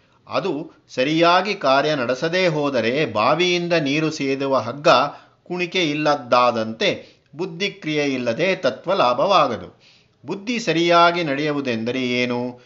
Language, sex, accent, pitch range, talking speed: Kannada, male, native, 130-170 Hz, 90 wpm